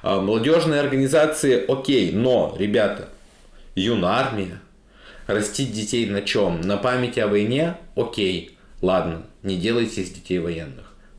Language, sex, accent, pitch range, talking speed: Russian, male, native, 100-145 Hz, 120 wpm